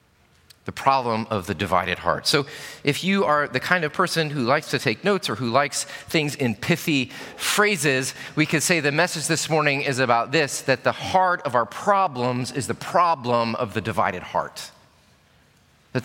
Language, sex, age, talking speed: English, male, 30-49, 185 wpm